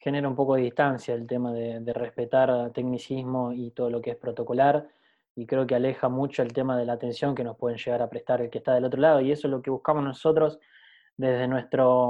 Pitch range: 130-150 Hz